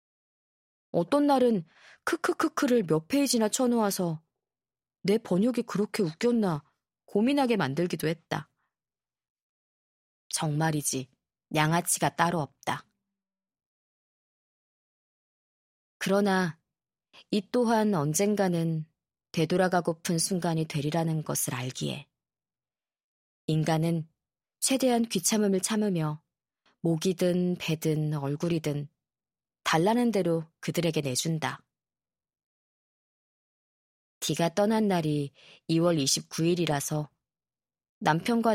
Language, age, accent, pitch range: Korean, 20-39, native, 155-205 Hz